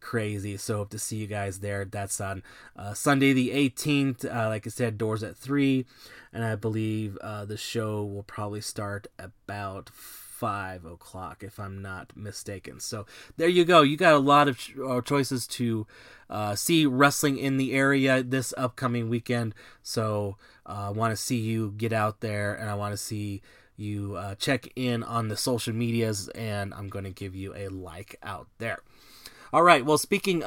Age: 20-39